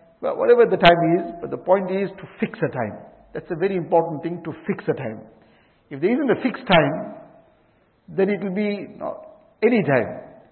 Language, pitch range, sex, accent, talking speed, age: English, 165-190 Hz, male, Indian, 195 wpm, 60-79